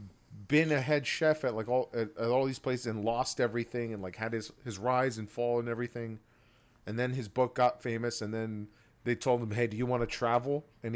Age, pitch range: 40-59, 110-130 Hz